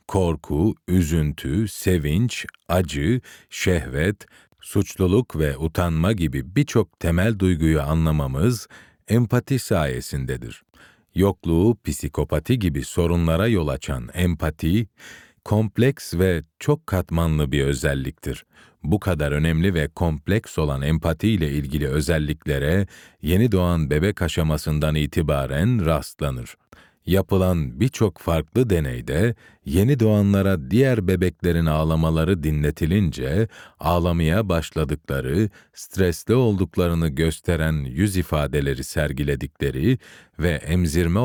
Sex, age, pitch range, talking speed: male, 40-59, 75-95 Hz, 95 wpm